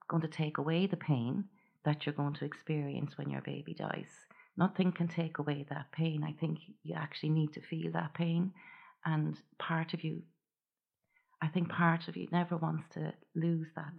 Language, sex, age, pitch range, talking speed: English, female, 30-49, 150-165 Hz, 190 wpm